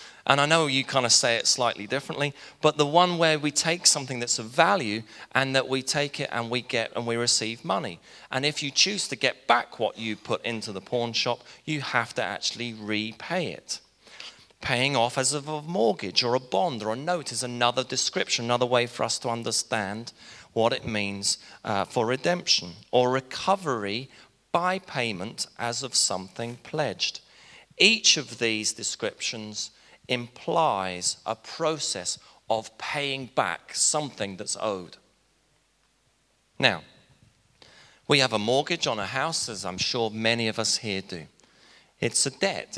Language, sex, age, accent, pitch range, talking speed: English, male, 30-49, British, 110-140 Hz, 165 wpm